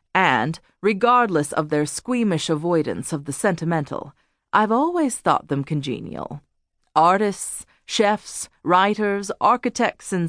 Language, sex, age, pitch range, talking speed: English, female, 40-59, 145-225 Hz, 110 wpm